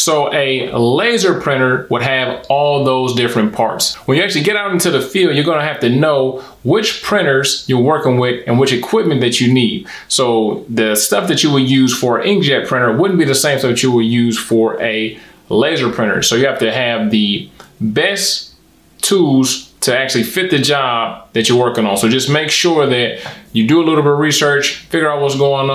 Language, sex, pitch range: English, male, 115-150 Hz